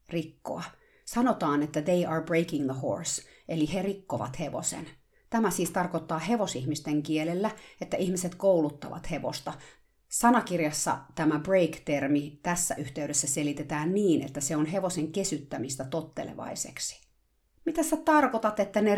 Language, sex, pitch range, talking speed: Finnish, female, 150-190 Hz, 120 wpm